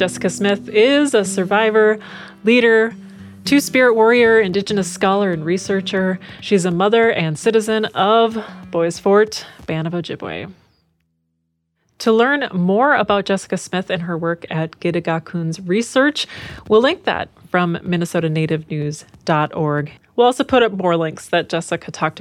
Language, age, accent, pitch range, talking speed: English, 30-49, American, 165-205 Hz, 130 wpm